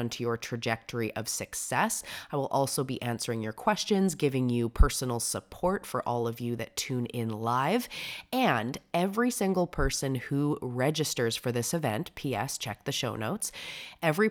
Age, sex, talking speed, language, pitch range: 20-39, female, 165 wpm, English, 120-155 Hz